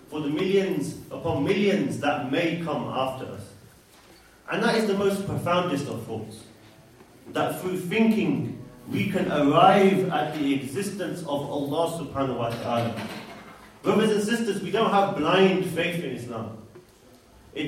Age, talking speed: 40-59, 145 wpm